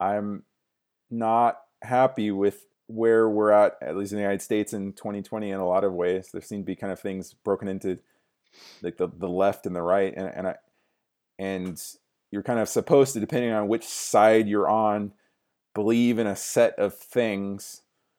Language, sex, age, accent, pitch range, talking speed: English, male, 30-49, American, 100-115 Hz, 190 wpm